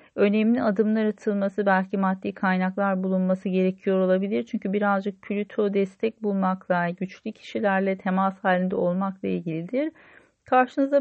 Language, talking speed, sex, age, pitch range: Turkish, 115 wpm, female, 40-59, 190-235 Hz